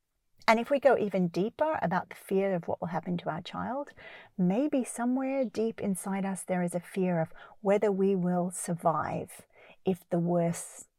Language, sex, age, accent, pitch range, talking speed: English, female, 40-59, Australian, 175-205 Hz, 180 wpm